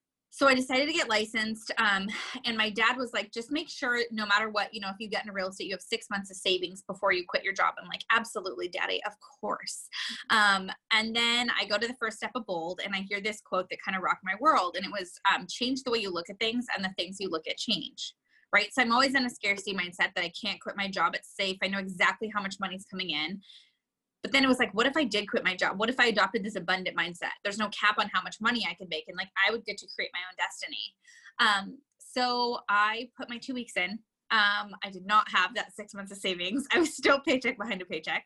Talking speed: 270 wpm